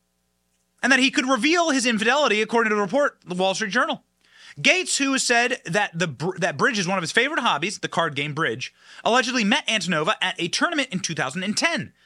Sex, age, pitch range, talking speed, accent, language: male, 30-49, 165-260 Hz, 200 wpm, American, English